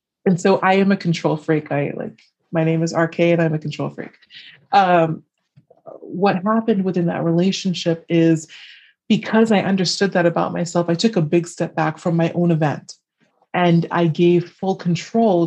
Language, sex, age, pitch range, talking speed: English, female, 30-49, 165-200 Hz, 180 wpm